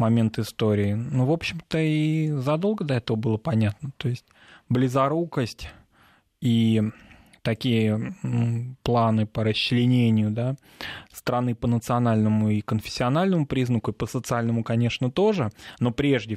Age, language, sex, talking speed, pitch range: 20-39, Russian, male, 115 wpm, 110-130 Hz